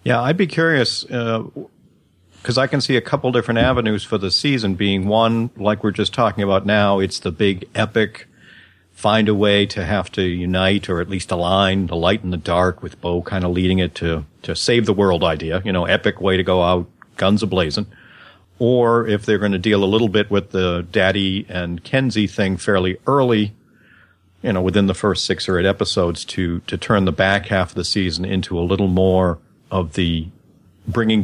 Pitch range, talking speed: 95-115 Hz, 175 wpm